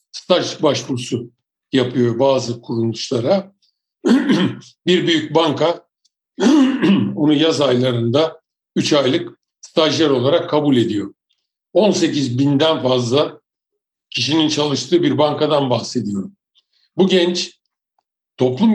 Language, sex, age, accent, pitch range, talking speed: Turkish, male, 60-79, native, 135-180 Hz, 90 wpm